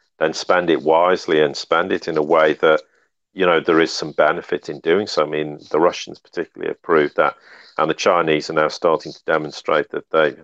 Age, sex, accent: 40-59, male, British